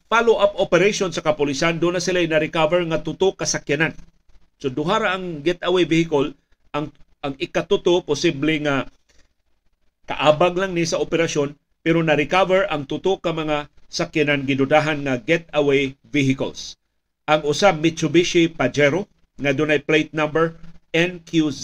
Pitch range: 145-170 Hz